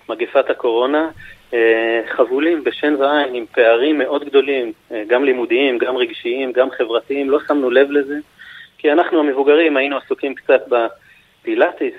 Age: 30-49